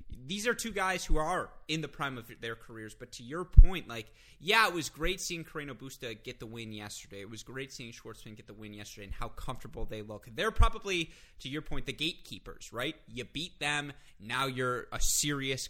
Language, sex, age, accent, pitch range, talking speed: English, male, 20-39, American, 115-150 Hz, 220 wpm